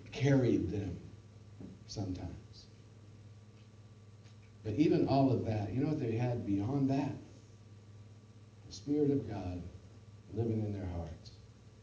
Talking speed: 115 wpm